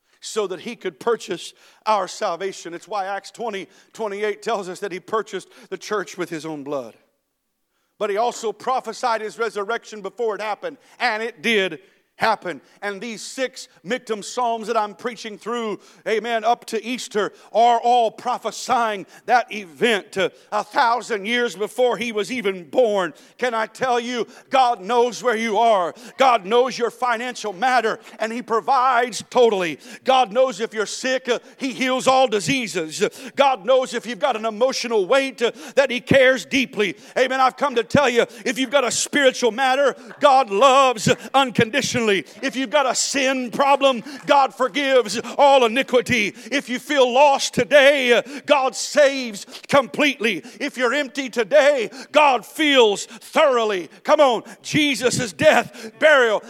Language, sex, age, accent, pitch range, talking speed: English, male, 50-69, American, 215-265 Hz, 160 wpm